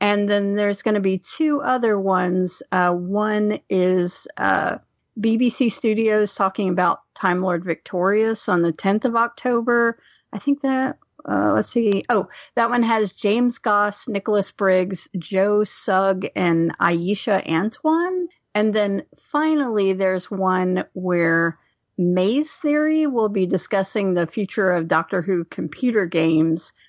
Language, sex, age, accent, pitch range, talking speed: English, female, 40-59, American, 180-225 Hz, 140 wpm